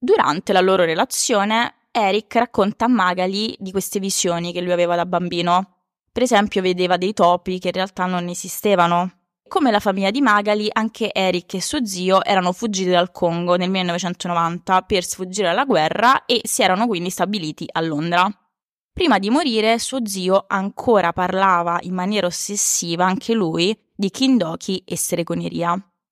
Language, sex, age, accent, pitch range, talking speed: Italian, female, 20-39, native, 175-210 Hz, 160 wpm